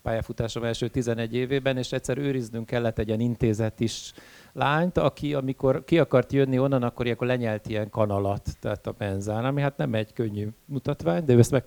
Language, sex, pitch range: Hungarian, male, 115-140 Hz